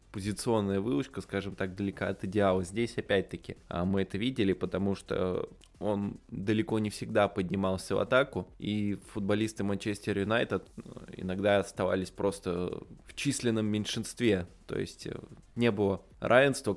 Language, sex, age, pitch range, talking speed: Russian, male, 20-39, 95-110 Hz, 130 wpm